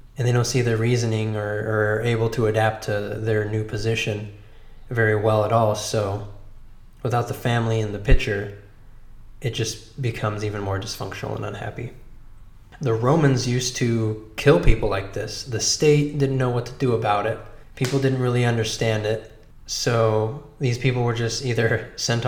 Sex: male